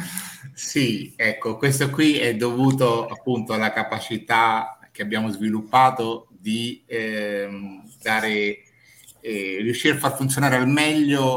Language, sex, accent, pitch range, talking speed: Italian, male, native, 110-125 Hz, 115 wpm